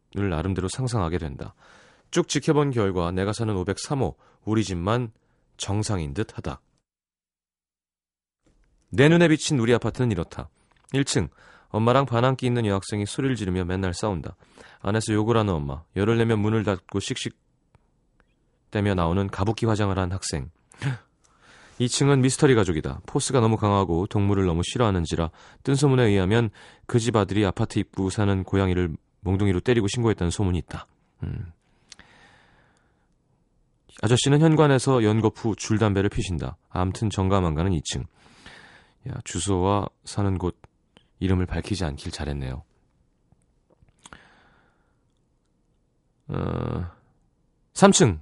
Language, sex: Korean, male